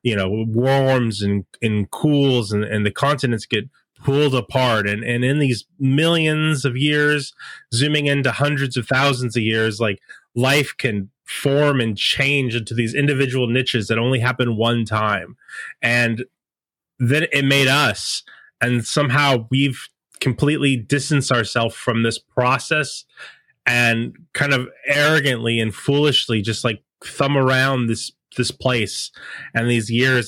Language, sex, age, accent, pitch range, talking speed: English, male, 20-39, American, 115-140 Hz, 145 wpm